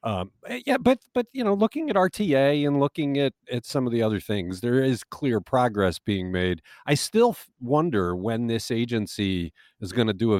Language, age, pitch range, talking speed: English, 50-69, 95-140 Hz, 210 wpm